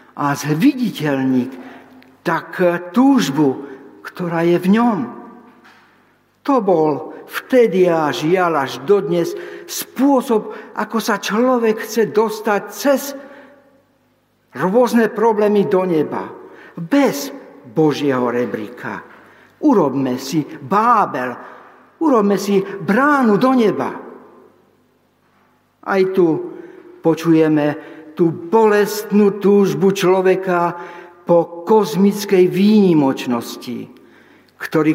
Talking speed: 85 wpm